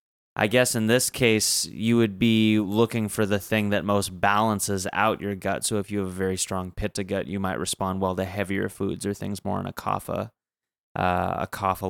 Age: 20-39